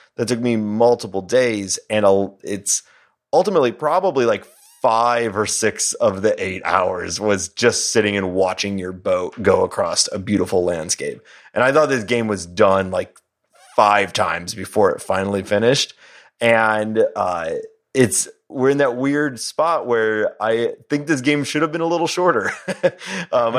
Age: 30-49